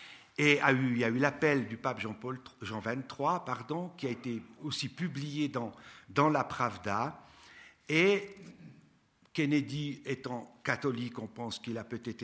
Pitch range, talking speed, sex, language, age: 120-145 Hz, 155 wpm, male, French, 60-79